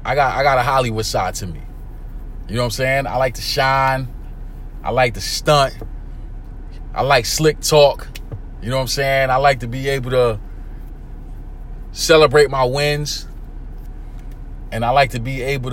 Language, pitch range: English, 115-150 Hz